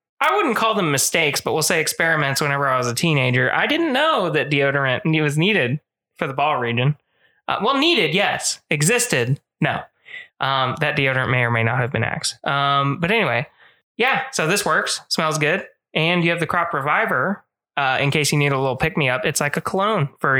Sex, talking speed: male, 210 wpm